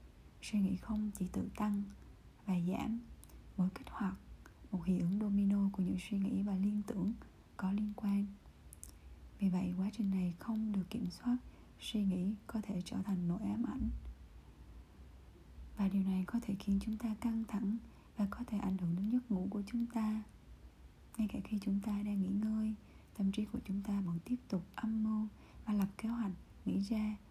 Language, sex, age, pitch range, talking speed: Vietnamese, female, 20-39, 185-210 Hz, 195 wpm